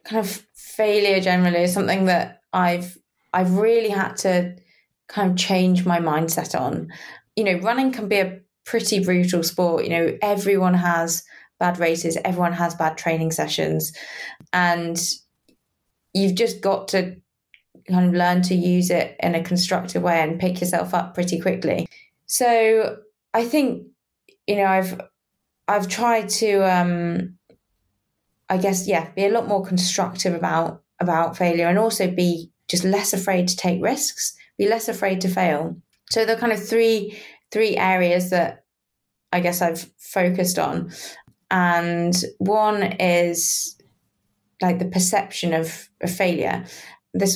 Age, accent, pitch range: 20-39, British, 170-200 Hz